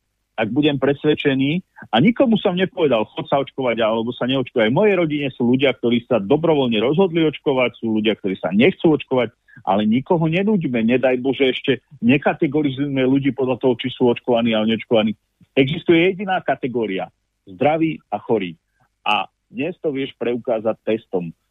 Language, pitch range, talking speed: Slovak, 115-150 Hz, 160 wpm